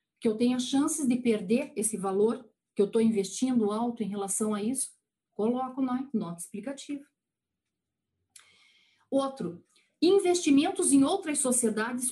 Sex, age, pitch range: female, 40-59, 210-260 Hz